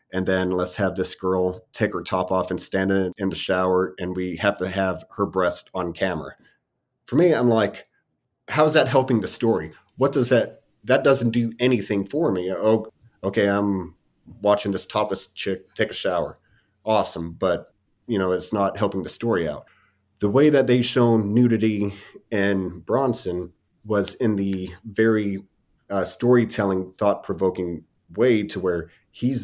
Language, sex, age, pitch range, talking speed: English, male, 30-49, 95-115 Hz, 170 wpm